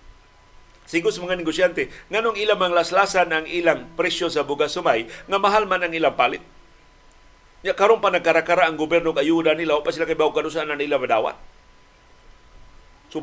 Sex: male